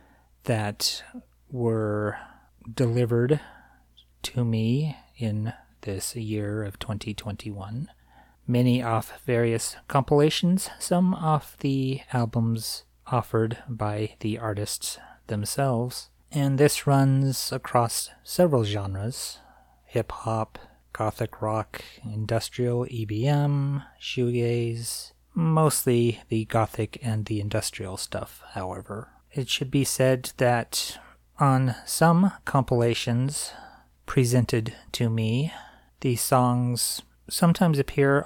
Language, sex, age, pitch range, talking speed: English, male, 30-49, 110-135 Hz, 90 wpm